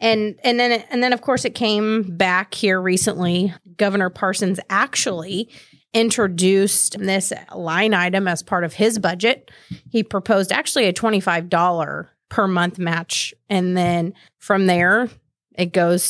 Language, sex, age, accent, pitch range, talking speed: English, female, 30-49, American, 180-220 Hz, 150 wpm